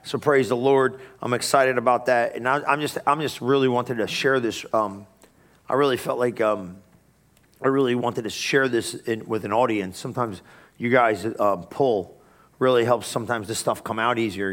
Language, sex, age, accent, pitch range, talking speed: English, male, 40-59, American, 110-125 Hz, 195 wpm